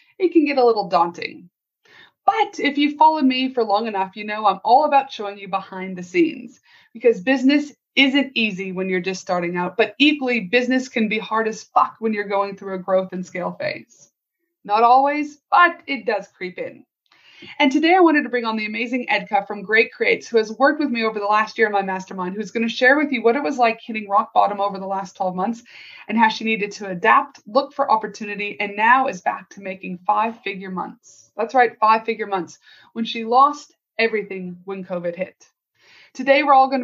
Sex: female